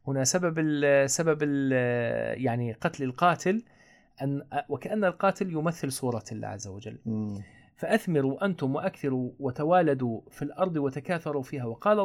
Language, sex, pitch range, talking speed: Arabic, male, 135-190 Hz, 125 wpm